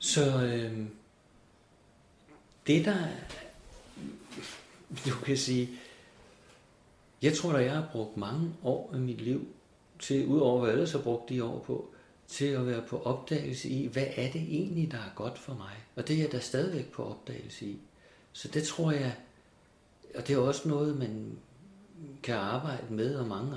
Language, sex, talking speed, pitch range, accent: Danish, male, 165 wpm, 125-155 Hz, native